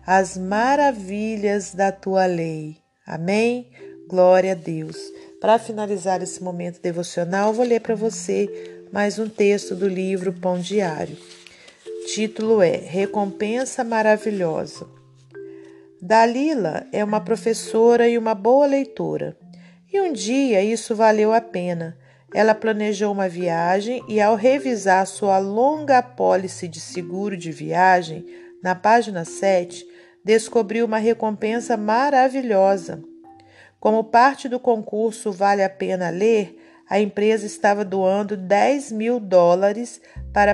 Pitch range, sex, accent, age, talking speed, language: 175-225 Hz, female, Brazilian, 40-59, 120 wpm, Portuguese